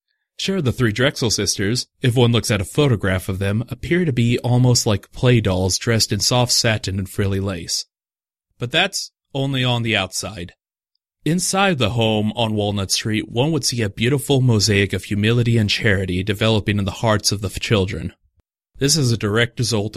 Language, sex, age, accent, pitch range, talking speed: English, male, 30-49, American, 100-120 Hz, 185 wpm